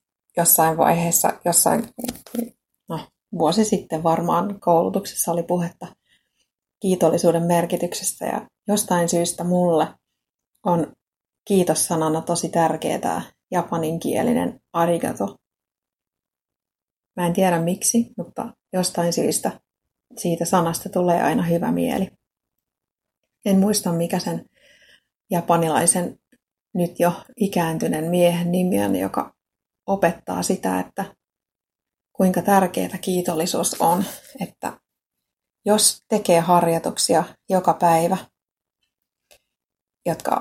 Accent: native